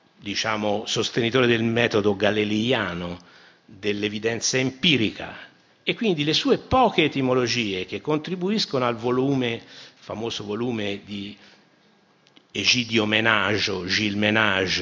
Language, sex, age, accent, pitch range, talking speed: Italian, male, 50-69, native, 100-135 Hz, 100 wpm